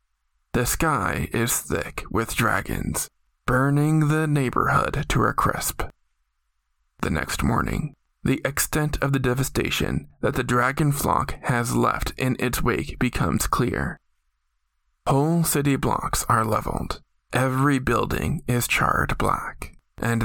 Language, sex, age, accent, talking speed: English, male, 20-39, American, 125 wpm